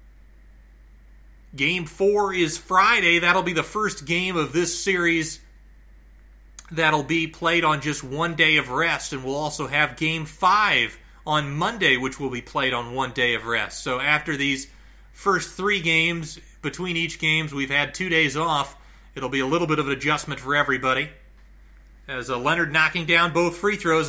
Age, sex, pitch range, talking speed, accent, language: 30-49, male, 140-190 Hz, 170 wpm, American, English